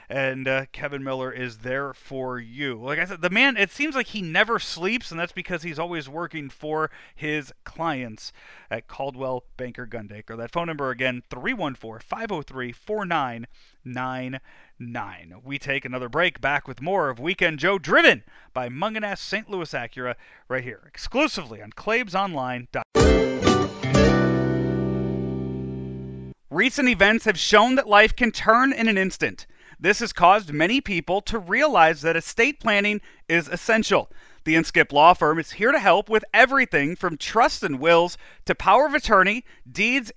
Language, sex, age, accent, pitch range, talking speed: English, male, 40-59, American, 130-220 Hz, 150 wpm